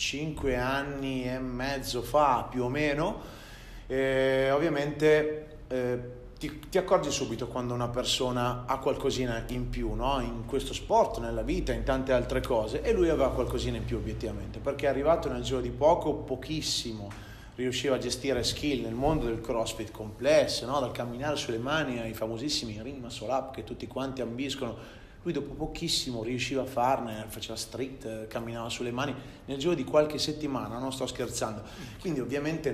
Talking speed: 165 wpm